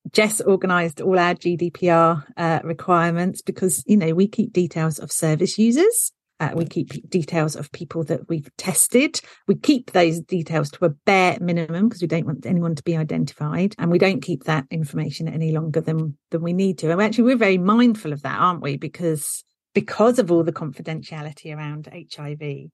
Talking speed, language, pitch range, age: 190 wpm, English, 160-210 Hz, 40-59